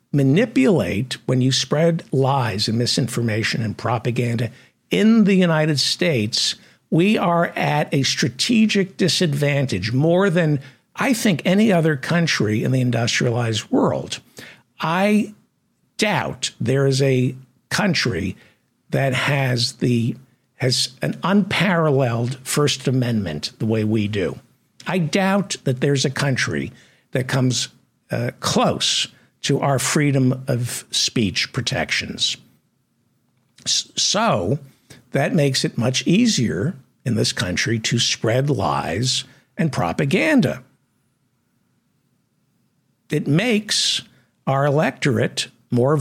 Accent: American